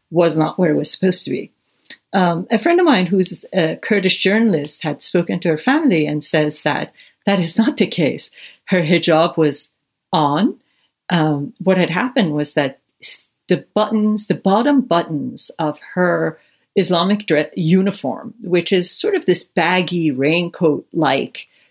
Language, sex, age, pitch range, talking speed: English, female, 50-69, 155-200 Hz, 160 wpm